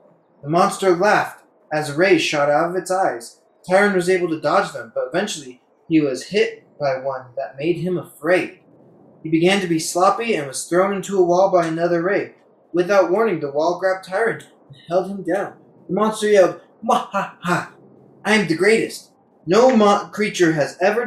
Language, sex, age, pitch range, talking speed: English, male, 20-39, 170-205 Hz, 185 wpm